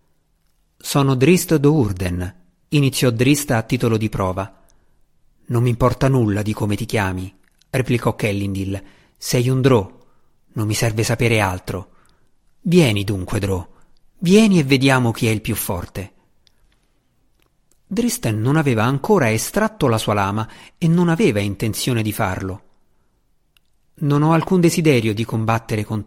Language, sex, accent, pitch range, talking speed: Italian, male, native, 105-150 Hz, 135 wpm